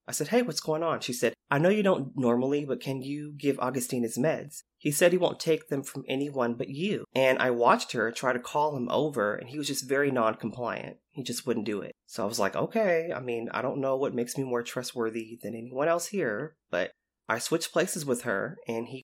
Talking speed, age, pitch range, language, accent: 245 wpm, 30-49, 120-155 Hz, English, American